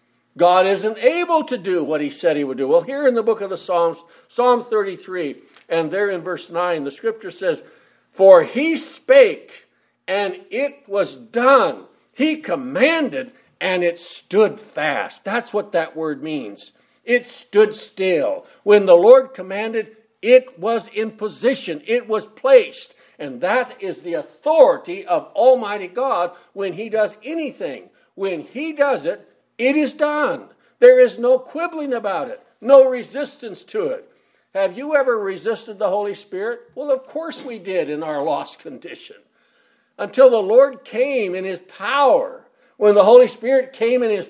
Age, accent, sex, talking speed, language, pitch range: 60-79, American, male, 165 wpm, English, 200-295 Hz